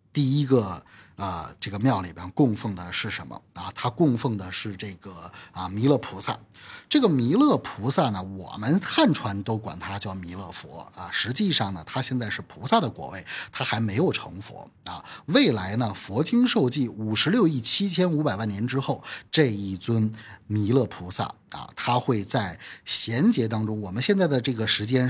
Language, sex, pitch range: Chinese, male, 100-145 Hz